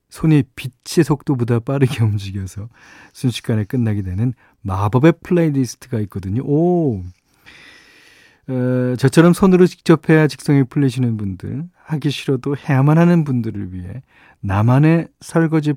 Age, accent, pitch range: 40-59, native, 115-150 Hz